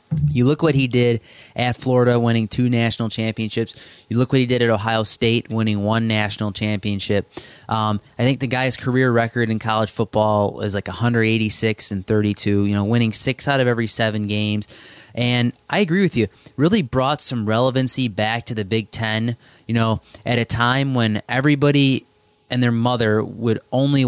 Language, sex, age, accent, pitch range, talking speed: English, male, 20-39, American, 110-130 Hz, 180 wpm